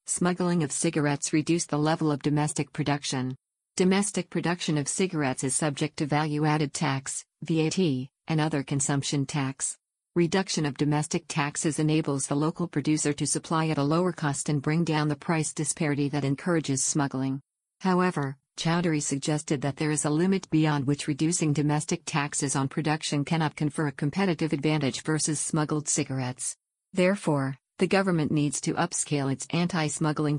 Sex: female